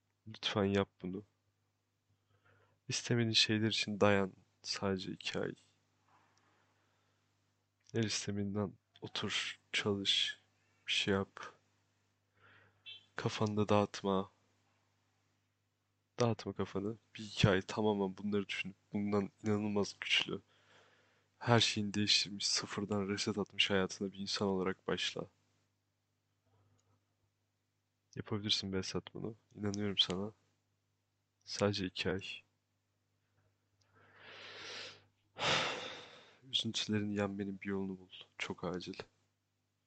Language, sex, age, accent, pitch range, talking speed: Turkish, male, 20-39, native, 100-110 Hz, 85 wpm